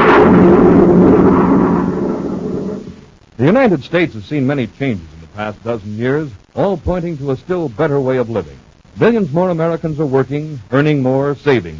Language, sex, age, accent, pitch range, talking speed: English, male, 60-79, American, 120-170 Hz, 145 wpm